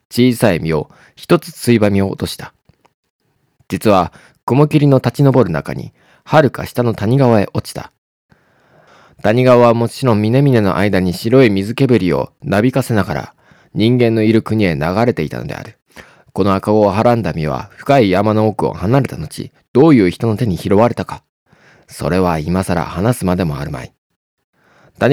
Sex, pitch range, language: male, 95-130 Hz, Japanese